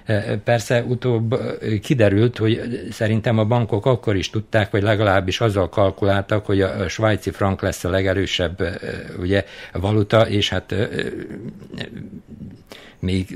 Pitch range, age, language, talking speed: 95-115 Hz, 60-79, Hungarian, 110 wpm